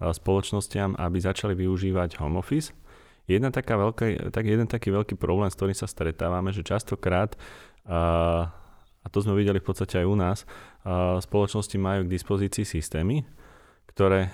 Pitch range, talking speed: 90-105 Hz, 150 wpm